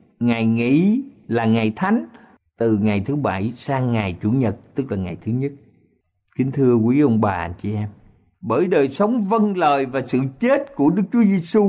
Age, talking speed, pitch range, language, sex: 50-69, 190 wpm, 110-170 Hz, Vietnamese, male